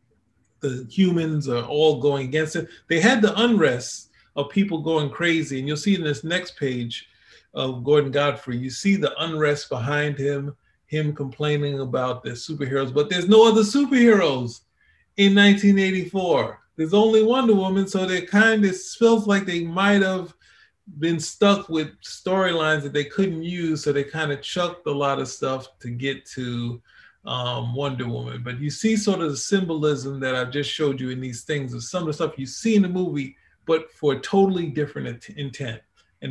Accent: American